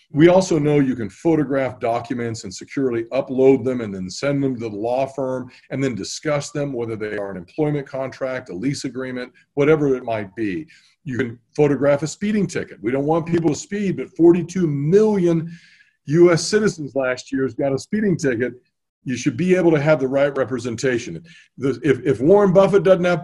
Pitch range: 135-175 Hz